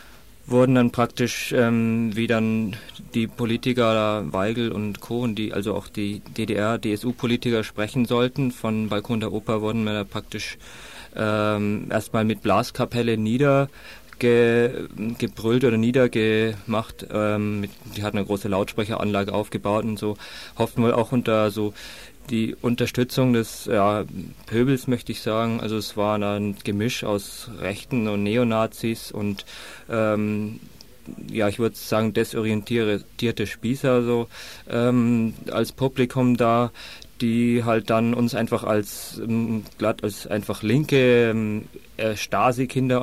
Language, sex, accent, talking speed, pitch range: German, male, German, 125 wpm, 105-120 Hz